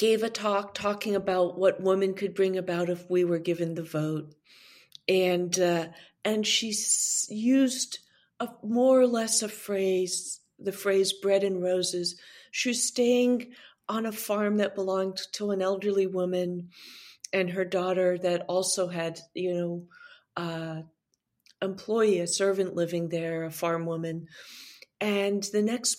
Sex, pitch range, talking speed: female, 180-215 Hz, 150 wpm